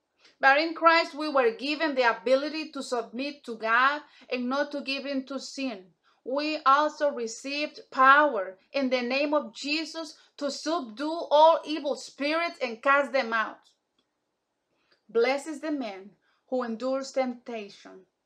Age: 30-49